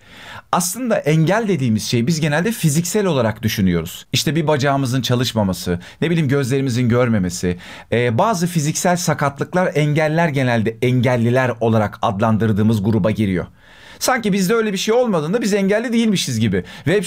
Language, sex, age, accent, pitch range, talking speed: Turkish, male, 40-59, native, 125-180 Hz, 135 wpm